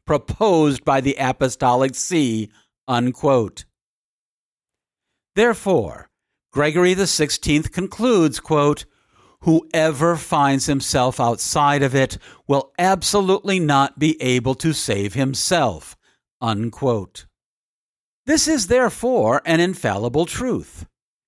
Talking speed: 95 wpm